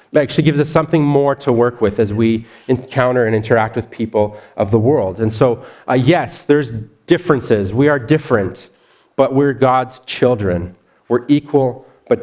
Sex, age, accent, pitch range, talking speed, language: male, 30-49, American, 110-150 Hz, 170 wpm, English